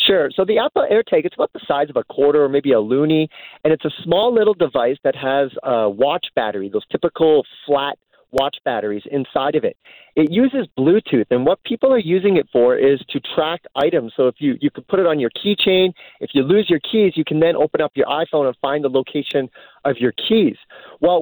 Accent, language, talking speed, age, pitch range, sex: American, English, 225 wpm, 40-59, 145-215 Hz, male